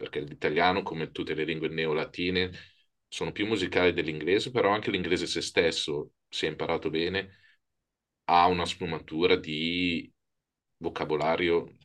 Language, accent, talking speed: Italian, native, 125 wpm